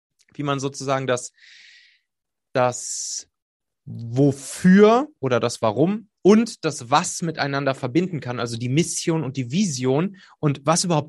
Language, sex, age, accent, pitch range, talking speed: German, male, 30-49, German, 145-190 Hz, 130 wpm